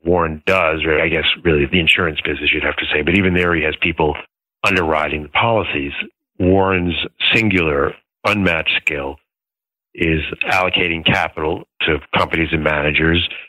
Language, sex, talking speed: English, male, 140 wpm